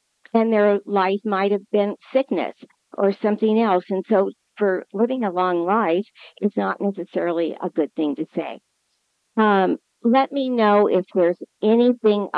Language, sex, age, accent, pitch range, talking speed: English, female, 50-69, American, 175-215 Hz, 155 wpm